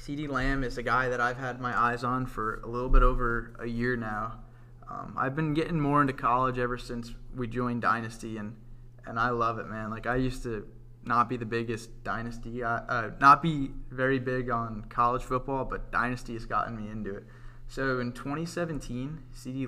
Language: English